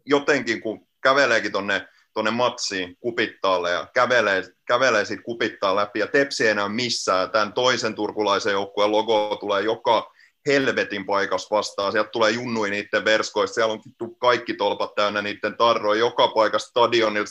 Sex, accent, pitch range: male, native, 105-125 Hz